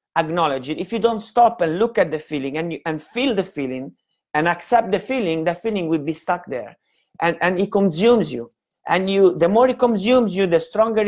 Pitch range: 150-185 Hz